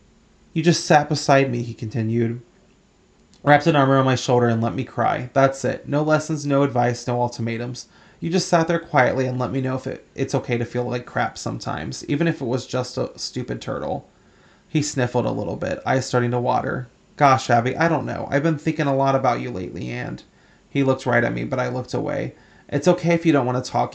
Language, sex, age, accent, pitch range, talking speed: English, male, 30-49, American, 125-145 Hz, 225 wpm